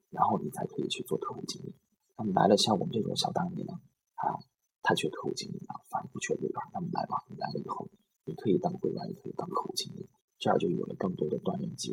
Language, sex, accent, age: Chinese, male, native, 20-39